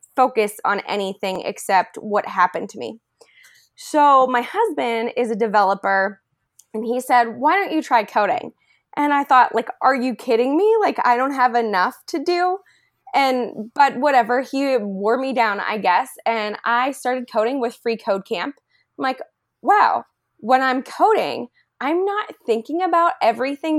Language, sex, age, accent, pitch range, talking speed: English, female, 20-39, American, 215-275 Hz, 165 wpm